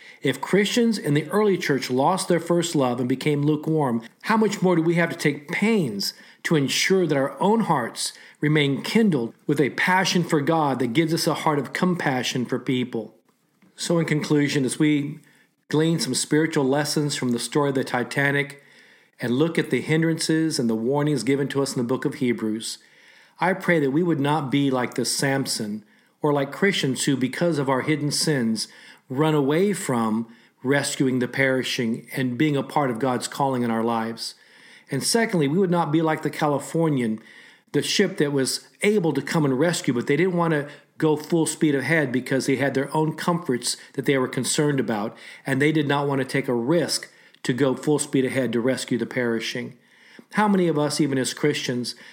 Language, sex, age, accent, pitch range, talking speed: English, male, 40-59, American, 130-165 Hz, 200 wpm